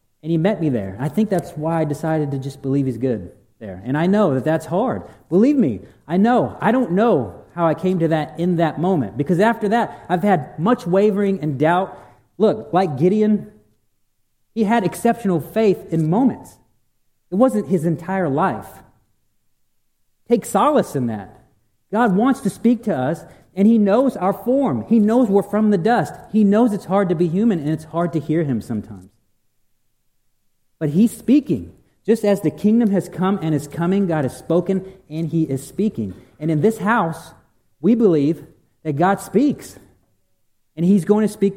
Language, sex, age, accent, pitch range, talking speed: English, male, 40-59, American, 135-210 Hz, 185 wpm